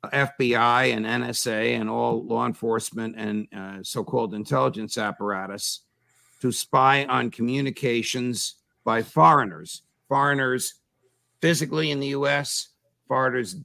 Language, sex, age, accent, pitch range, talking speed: English, male, 50-69, American, 120-150 Hz, 105 wpm